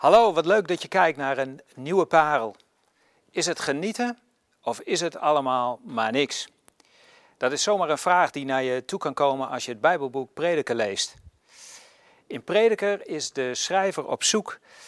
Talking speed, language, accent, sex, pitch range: 175 wpm, Dutch, Dutch, male, 130-195 Hz